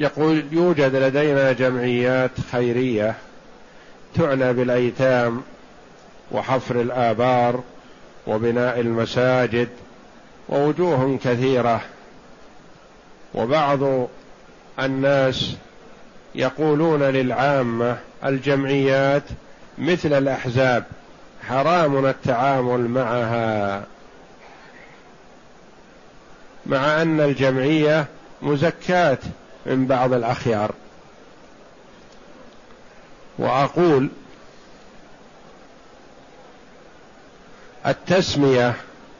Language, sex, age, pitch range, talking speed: Arabic, male, 50-69, 125-145 Hz, 45 wpm